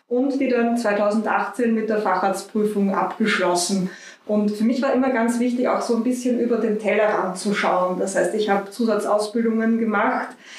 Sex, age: female, 20-39